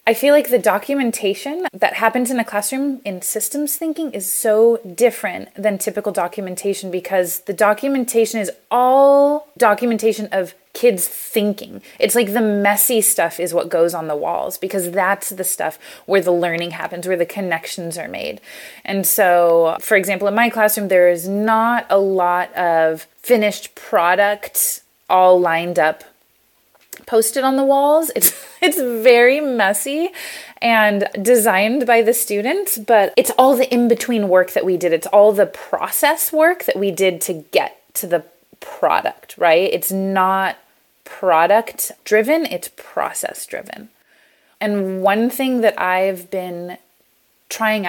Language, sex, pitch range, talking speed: English, female, 190-245 Hz, 150 wpm